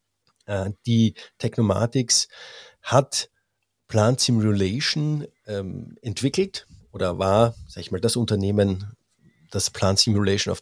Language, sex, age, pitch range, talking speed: German, male, 50-69, 105-130 Hz, 95 wpm